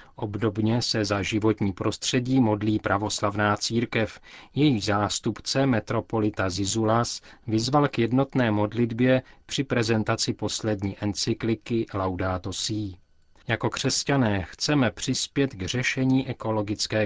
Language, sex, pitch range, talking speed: Czech, male, 105-120 Hz, 100 wpm